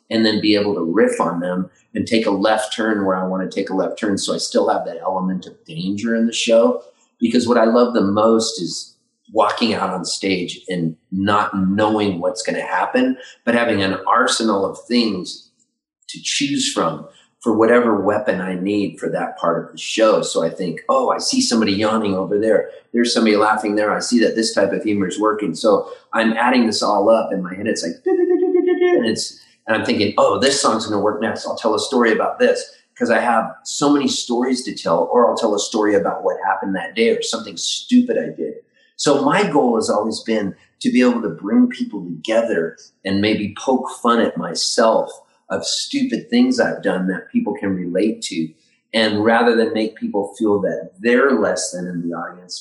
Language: English